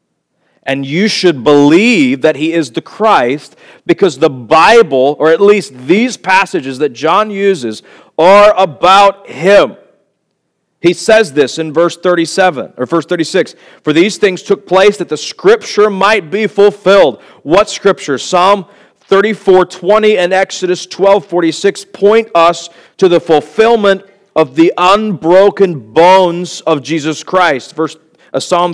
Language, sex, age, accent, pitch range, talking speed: English, male, 40-59, American, 160-205 Hz, 140 wpm